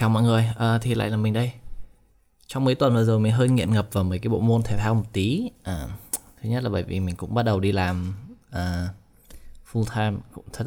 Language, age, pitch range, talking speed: Vietnamese, 20-39, 100-115 Hz, 225 wpm